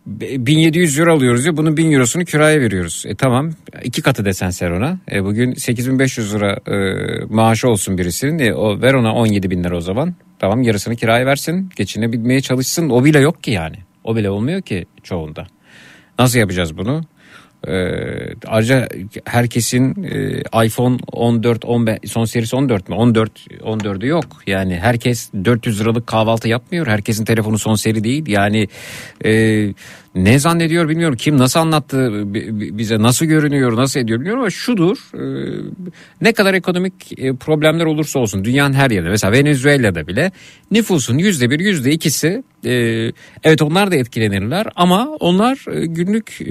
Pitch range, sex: 110-155 Hz, male